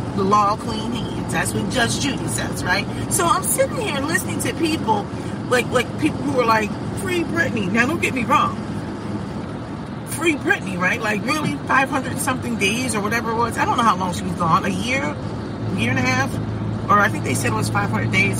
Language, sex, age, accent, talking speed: English, female, 40-59, American, 215 wpm